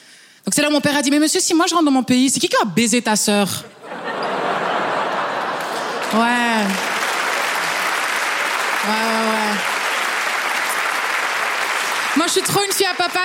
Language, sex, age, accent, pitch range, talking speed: French, female, 20-39, French, 215-280 Hz, 165 wpm